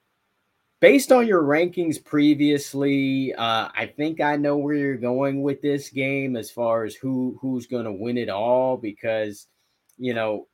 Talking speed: 160 wpm